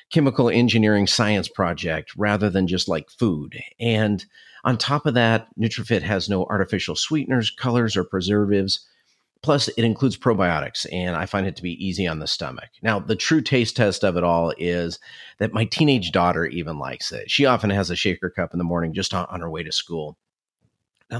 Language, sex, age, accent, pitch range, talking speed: English, male, 40-59, American, 90-120 Hz, 190 wpm